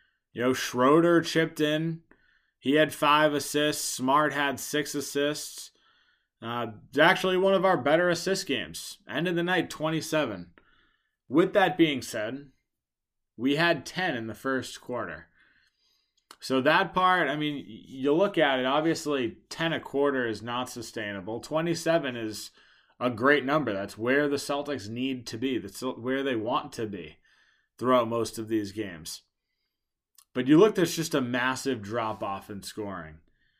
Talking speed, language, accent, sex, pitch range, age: 155 wpm, English, American, male, 120-150 Hz, 20-39